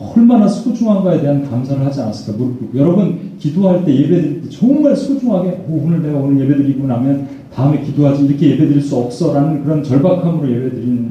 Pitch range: 125-175 Hz